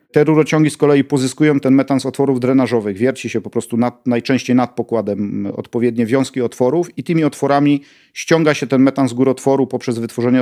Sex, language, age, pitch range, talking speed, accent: male, Polish, 40-59, 120-145 Hz, 185 wpm, native